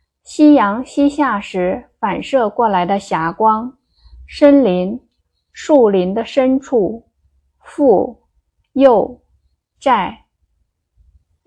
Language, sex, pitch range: Chinese, female, 190-260 Hz